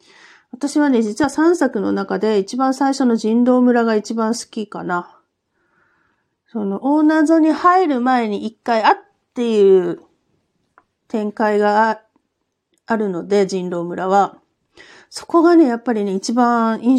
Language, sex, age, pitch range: Japanese, female, 40-59, 205-300 Hz